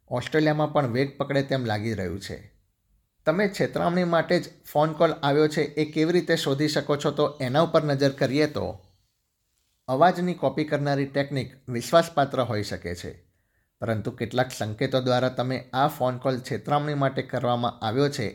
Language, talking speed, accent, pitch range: Gujarati, 160 wpm, native, 115-145 Hz